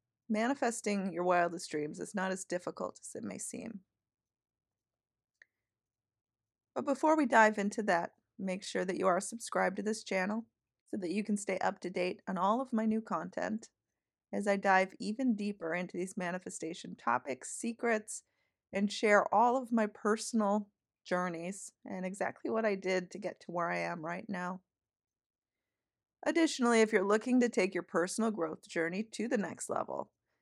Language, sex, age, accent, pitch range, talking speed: English, female, 40-59, American, 175-225 Hz, 170 wpm